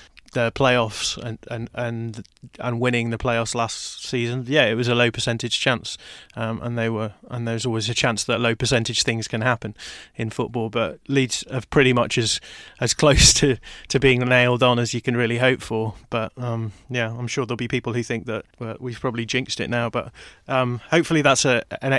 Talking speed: 205 wpm